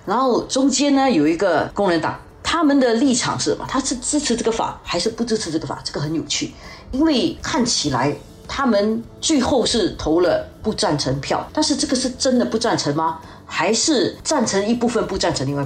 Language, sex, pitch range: Chinese, female, 145-225 Hz